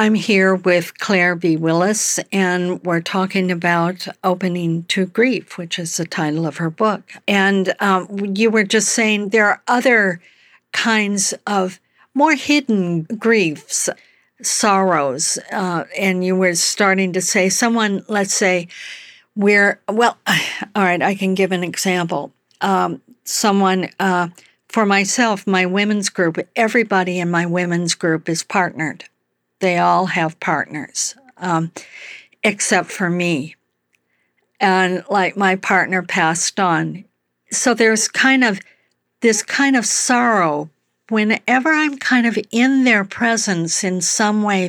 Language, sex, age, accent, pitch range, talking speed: English, female, 60-79, American, 175-210 Hz, 135 wpm